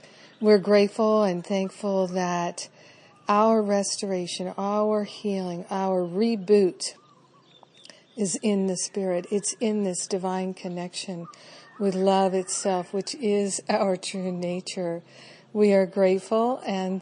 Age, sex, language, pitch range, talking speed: 50-69, female, English, 180-205 Hz, 115 wpm